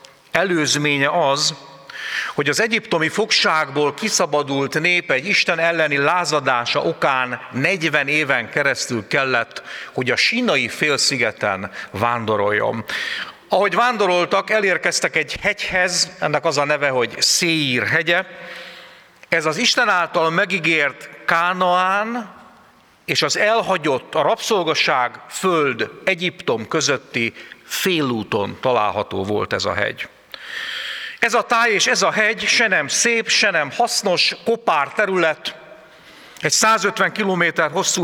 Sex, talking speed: male, 115 wpm